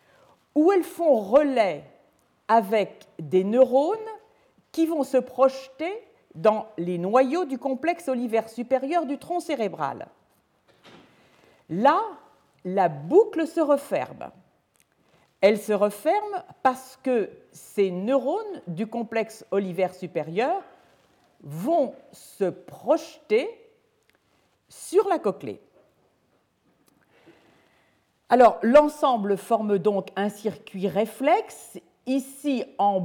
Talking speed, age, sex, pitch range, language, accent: 95 wpm, 50-69, female, 195-310 Hz, French, French